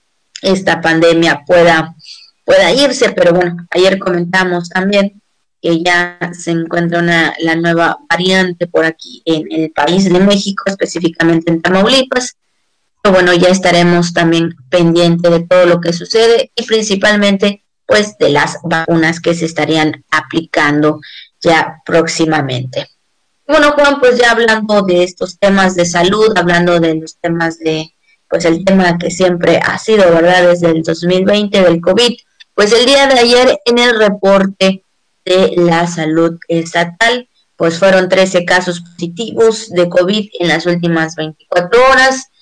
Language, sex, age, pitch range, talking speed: Spanish, female, 30-49, 165-200 Hz, 145 wpm